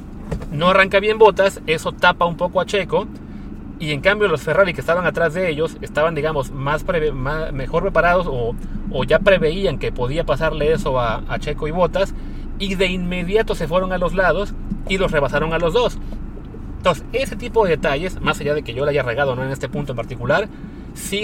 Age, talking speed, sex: 30-49, 210 wpm, male